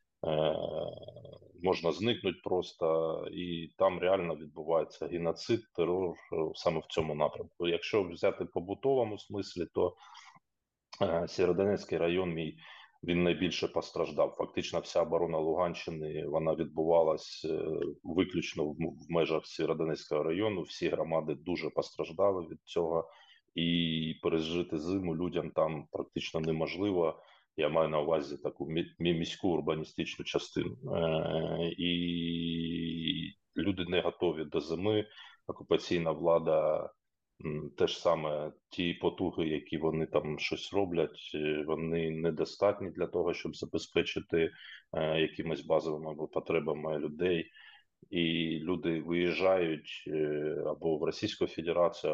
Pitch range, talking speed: 80-90 Hz, 100 wpm